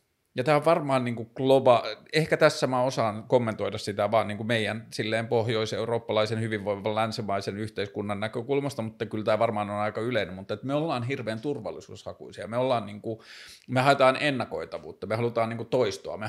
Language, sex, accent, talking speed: Finnish, male, native, 170 wpm